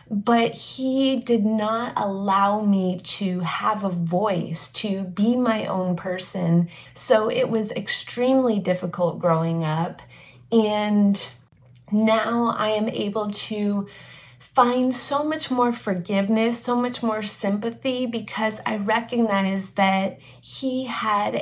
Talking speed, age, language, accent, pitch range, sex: 120 wpm, 30-49, English, American, 195-225 Hz, female